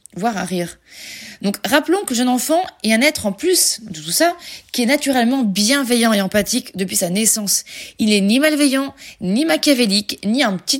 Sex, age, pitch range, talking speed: female, 20-39, 200-275 Hz, 190 wpm